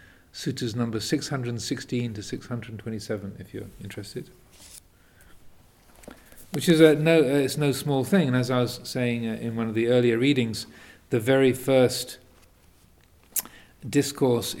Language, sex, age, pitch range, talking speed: English, male, 40-59, 110-125 Hz, 135 wpm